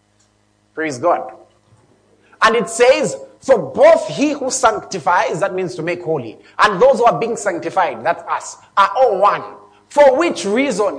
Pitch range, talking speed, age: 195-295 Hz, 160 wpm, 30-49